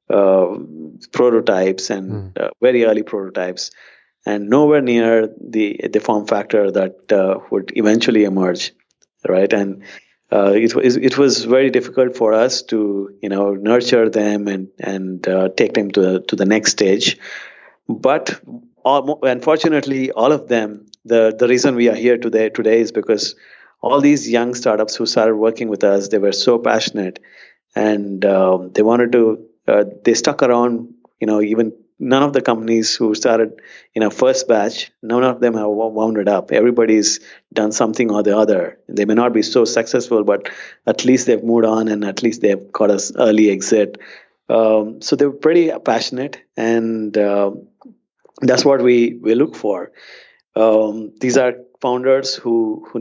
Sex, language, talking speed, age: male, English, 170 wpm, 30-49